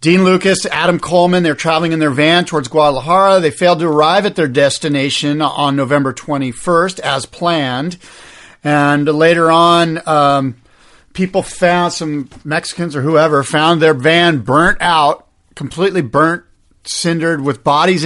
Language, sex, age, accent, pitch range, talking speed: English, male, 50-69, American, 135-165 Hz, 145 wpm